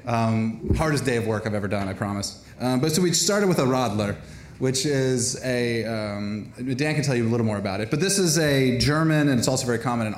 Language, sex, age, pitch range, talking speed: English, male, 30-49, 115-155 Hz, 240 wpm